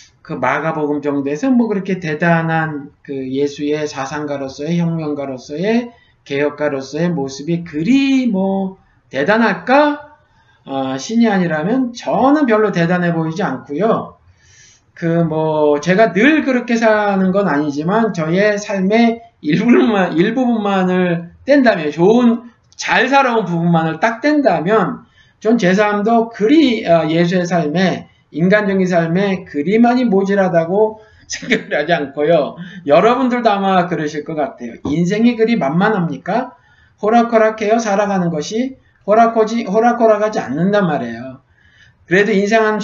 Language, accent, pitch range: Korean, native, 150-225 Hz